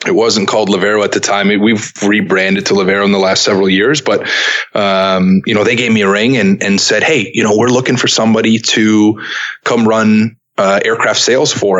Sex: male